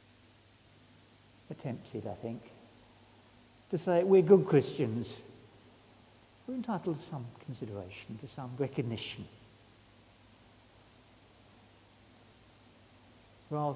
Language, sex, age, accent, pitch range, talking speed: English, male, 60-79, British, 110-145 Hz, 80 wpm